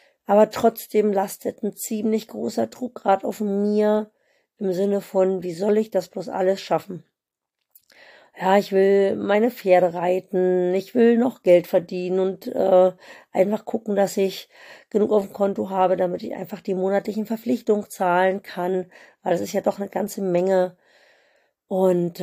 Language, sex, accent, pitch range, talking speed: German, female, German, 185-220 Hz, 160 wpm